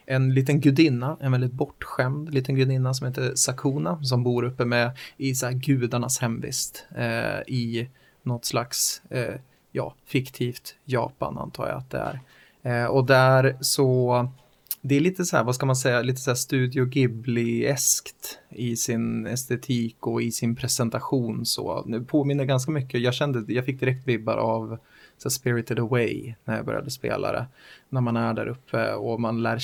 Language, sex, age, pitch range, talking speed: Swedish, male, 20-39, 120-135 Hz, 175 wpm